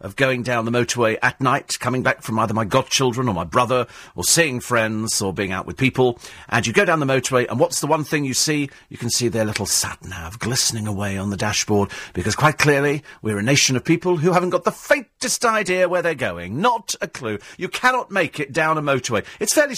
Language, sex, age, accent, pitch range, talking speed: English, male, 40-59, British, 100-145 Hz, 235 wpm